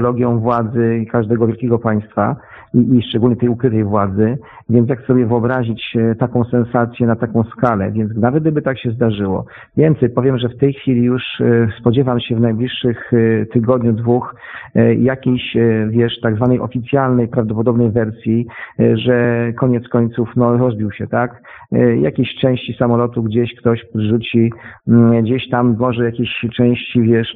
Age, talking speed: 40-59, 145 wpm